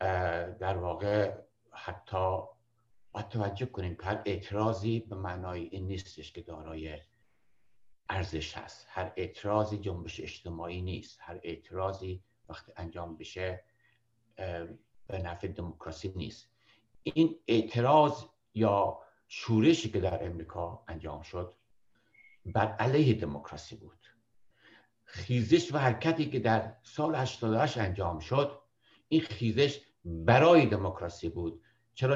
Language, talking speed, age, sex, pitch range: Persian, 105 wpm, 60-79, male, 95-125 Hz